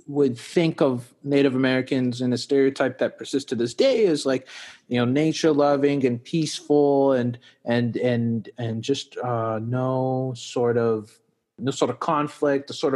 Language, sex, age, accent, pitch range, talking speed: English, male, 30-49, American, 125-155 Hz, 165 wpm